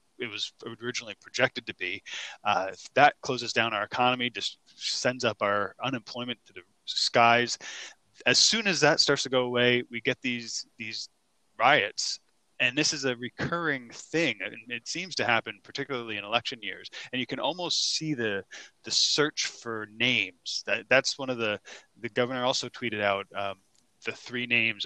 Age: 20-39